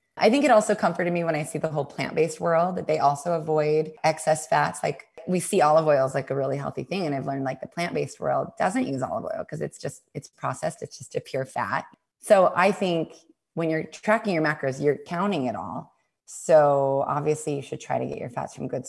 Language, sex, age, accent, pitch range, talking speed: English, female, 20-39, American, 145-200 Hz, 235 wpm